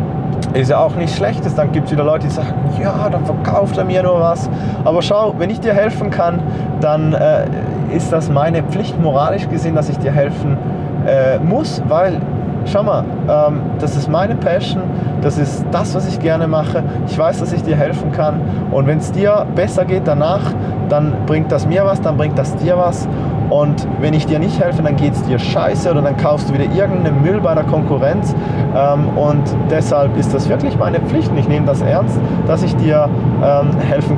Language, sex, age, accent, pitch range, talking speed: German, male, 20-39, German, 145-170 Hz, 205 wpm